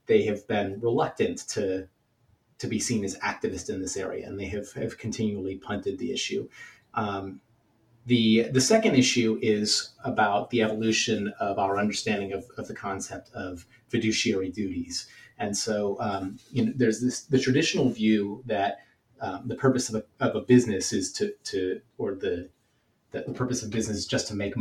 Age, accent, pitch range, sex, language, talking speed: 30-49, American, 105-120 Hz, male, English, 180 wpm